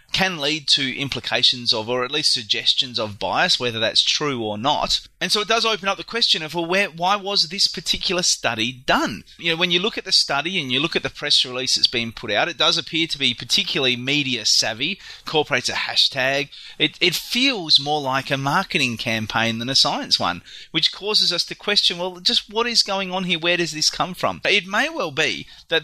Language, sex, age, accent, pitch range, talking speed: English, male, 30-49, Australian, 125-185 Hz, 225 wpm